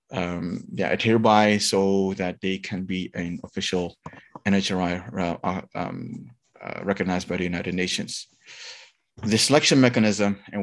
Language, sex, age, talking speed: English, male, 20-39, 130 wpm